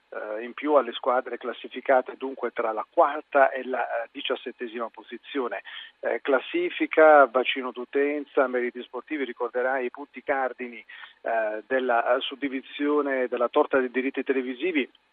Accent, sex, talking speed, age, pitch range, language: native, male, 115 wpm, 40-59, 130-155 Hz, Italian